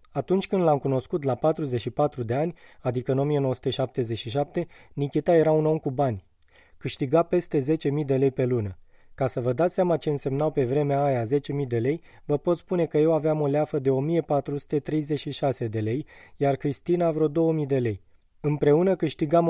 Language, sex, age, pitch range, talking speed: Romanian, male, 20-39, 135-160 Hz, 175 wpm